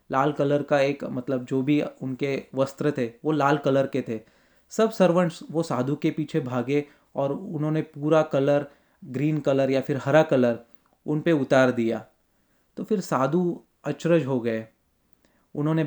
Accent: native